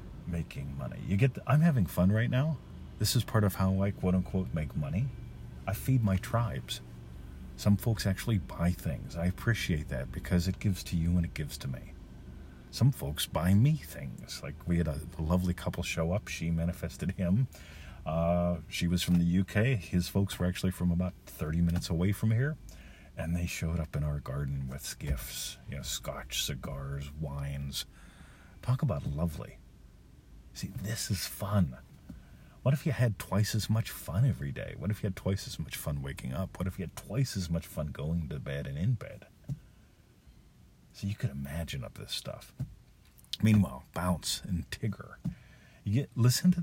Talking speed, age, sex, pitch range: 185 wpm, 40-59, male, 75-105 Hz